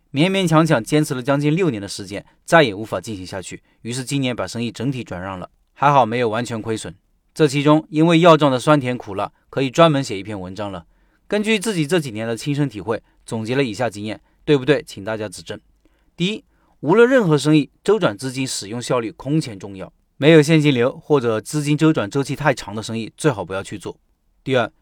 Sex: male